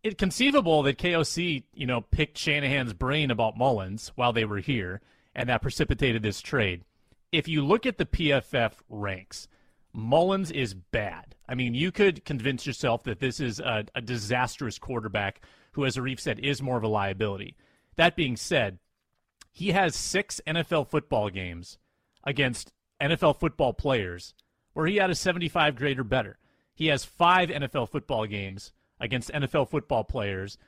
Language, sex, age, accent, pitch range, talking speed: English, male, 30-49, American, 110-155 Hz, 160 wpm